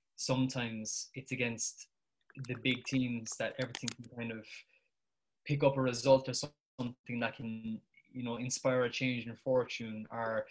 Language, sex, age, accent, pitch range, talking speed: English, male, 20-39, Irish, 115-130 Hz, 155 wpm